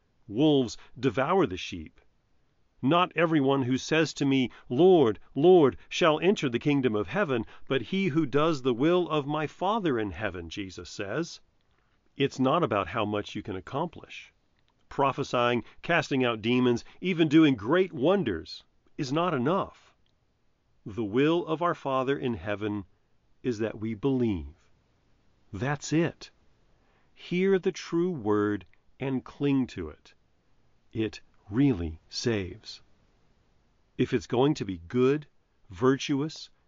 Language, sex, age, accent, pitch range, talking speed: English, male, 40-59, American, 110-150 Hz, 135 wpm